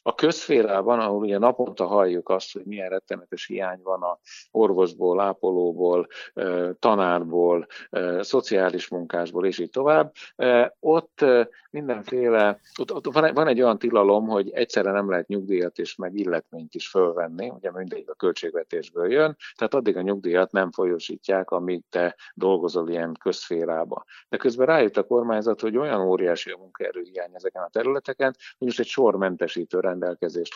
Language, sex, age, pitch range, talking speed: Hungarian, male, 50-69, 90-135 Hz, 140 wpm